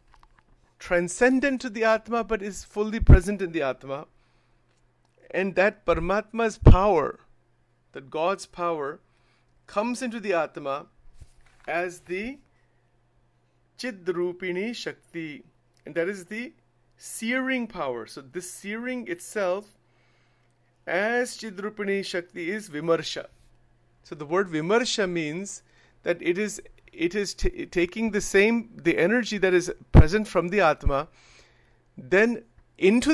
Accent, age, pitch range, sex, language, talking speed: Indian, 40-59, 170-225 Hz, male, English, 120 wpm